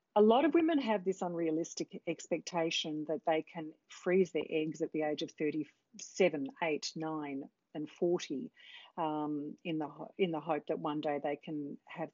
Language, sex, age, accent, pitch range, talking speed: English, female, 40-59, Australian, 155-190 Hz, 175 wpm